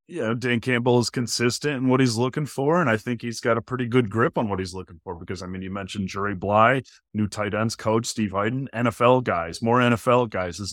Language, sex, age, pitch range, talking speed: English, male, 30-49, 105-130 Hz, 240 wpm